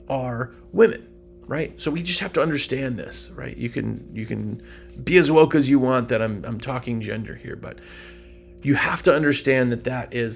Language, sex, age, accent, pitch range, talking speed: English, male, 30-49, American, 110-150 Hz, 205 wpm